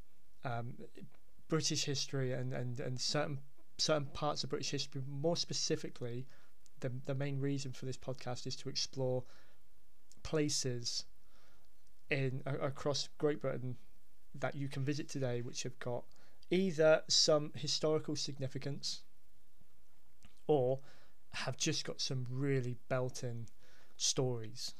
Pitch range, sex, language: 125-150 Hz, male, English